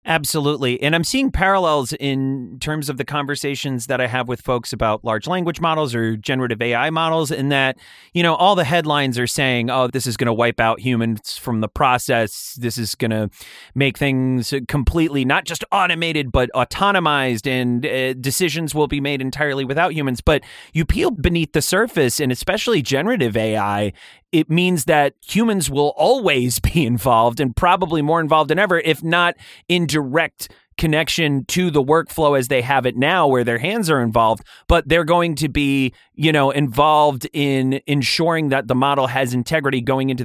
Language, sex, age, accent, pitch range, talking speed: English, male, 30-49, American, 130-160 Hz, 185 wpm